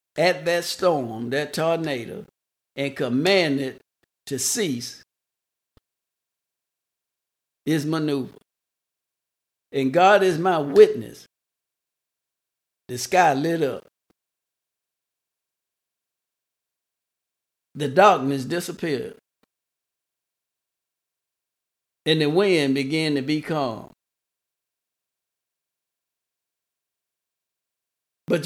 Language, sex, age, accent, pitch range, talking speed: English, male, 60-79, American, 145-190 Hz, 65 wpm